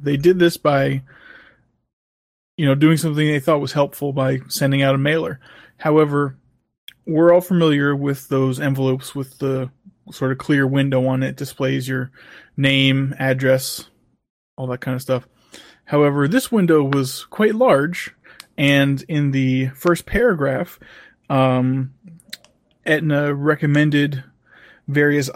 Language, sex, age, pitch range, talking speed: English, male, 20-39, 135-155 Hz, 135 wpm